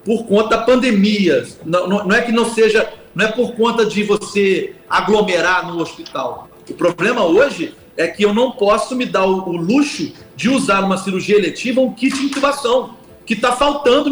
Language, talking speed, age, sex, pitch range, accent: Portuguese, 185 wpm, 40-59, male, 185-245 Hz, Brazilian